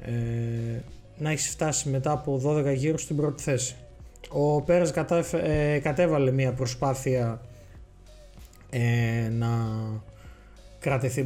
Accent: native